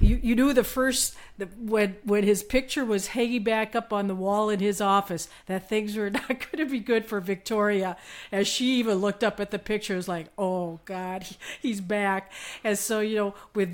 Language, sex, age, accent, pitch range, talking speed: English, female, 50-69, American, 195-225 Hz, 220 wpm